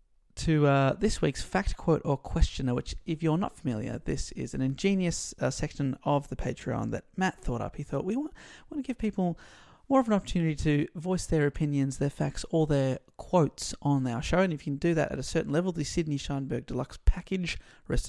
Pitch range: 140-185 Hz